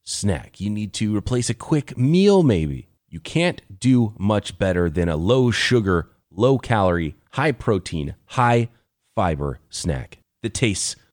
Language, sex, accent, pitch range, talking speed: English, male, American, 110-165 Hz, 125 wpm